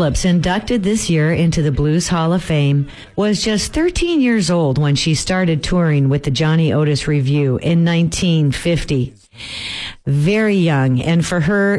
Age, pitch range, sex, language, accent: 50-69, 150-185 Hz, female, Japanese, American